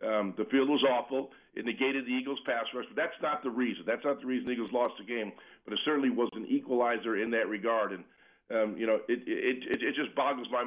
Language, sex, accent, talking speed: English, male, American, 255 wpm